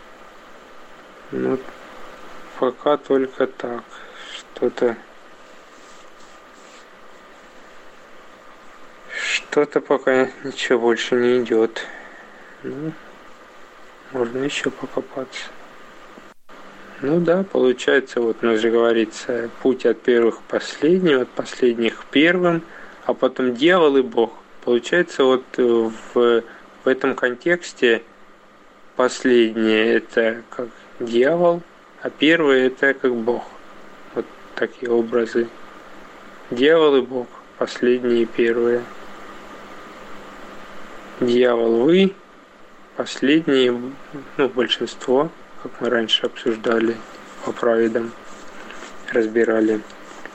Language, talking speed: Russian, 90 wpm